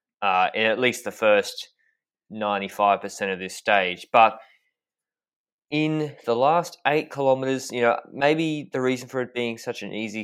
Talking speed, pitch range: 160 wpm, 100-120 Hz